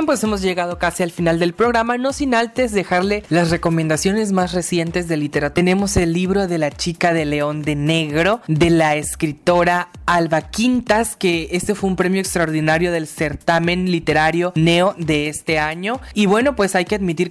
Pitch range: 160-195 Hz